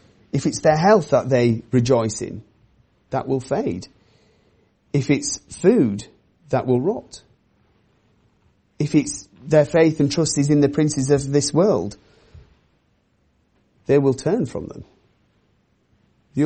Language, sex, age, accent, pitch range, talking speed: English, male, 30-49, British, 105-140 Hz, 130 wpm